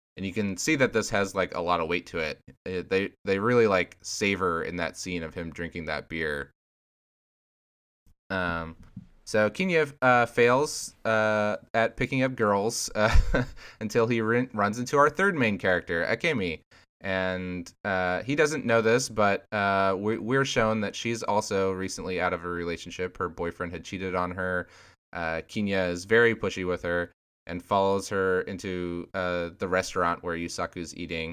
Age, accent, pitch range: 20-39, American, 85-110 Hz